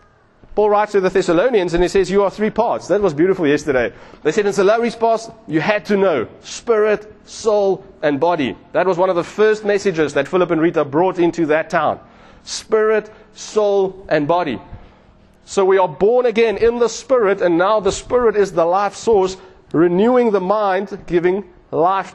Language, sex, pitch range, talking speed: English, male, 175-215 Hz, 190 wpm